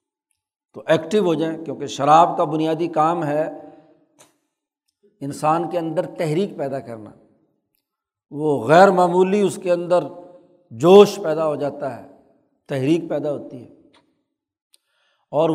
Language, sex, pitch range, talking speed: Urdu, male, 150-195 Hz, 125 wpm